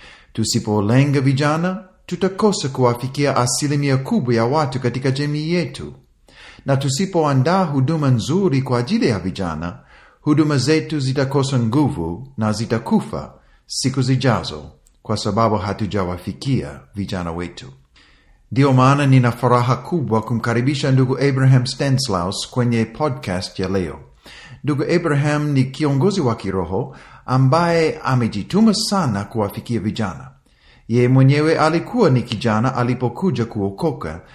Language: Swahili